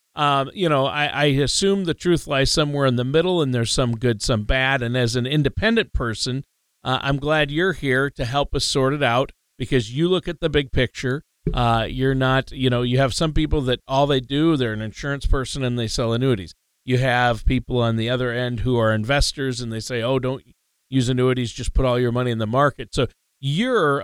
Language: English